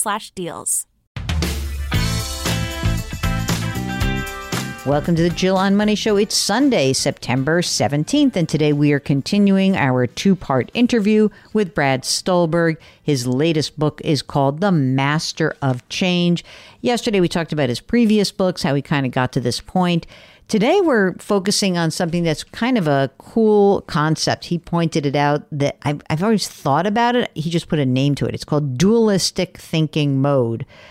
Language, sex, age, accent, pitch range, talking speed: English, female, 50-69, American, 135-185 Hz, 155 wpm